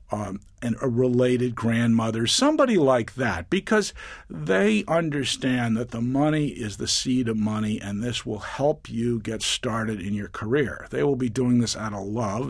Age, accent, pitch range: 50-69, American, 105-135 Hz